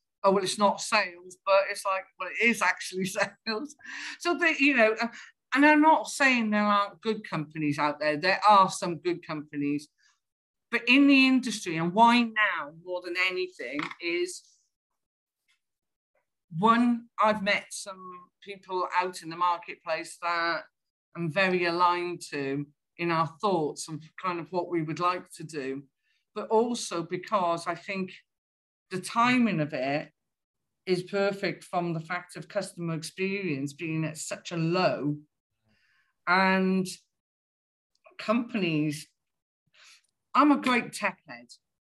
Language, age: English, 50-69